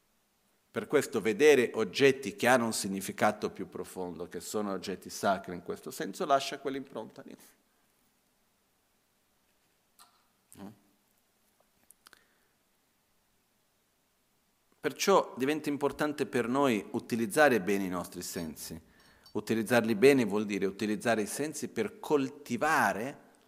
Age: 50-69